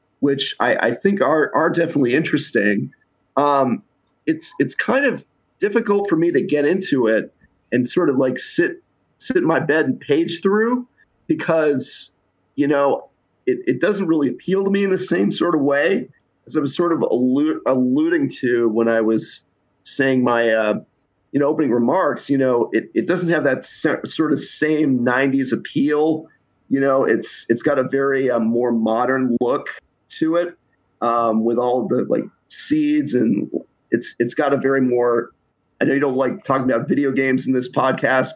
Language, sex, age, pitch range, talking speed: English, male, 40-59, 120-165 Hz, 185 wpm